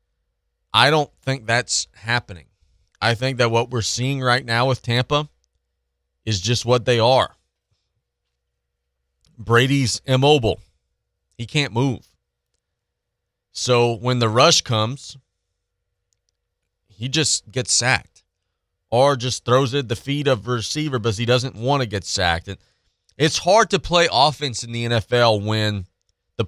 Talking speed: 140 wpm